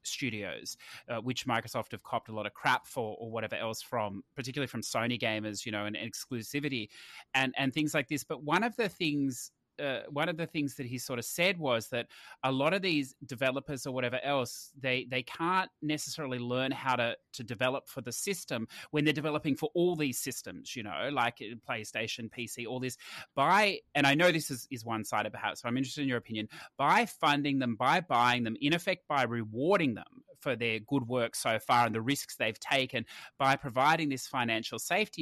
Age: 30-49